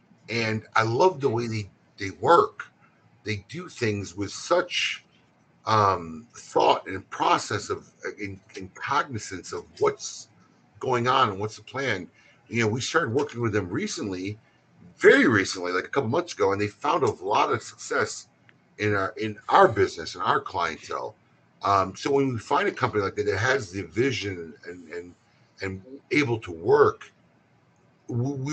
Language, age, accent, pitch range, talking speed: English, 50-69, American, 100-140 Hz, 165 wpm